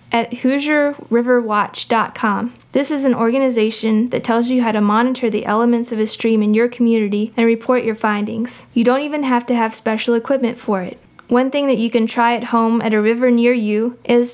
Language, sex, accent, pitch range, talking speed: English, female, American, 220-245 Hz, 200 wpm